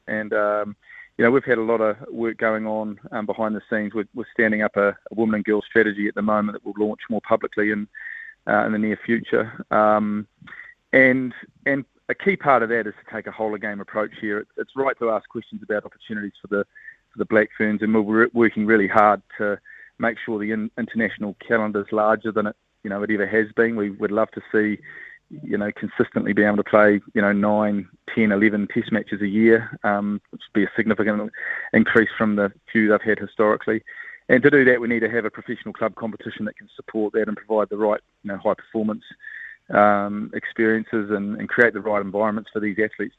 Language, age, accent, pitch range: English, 30-49, Australian, 105-110 Hz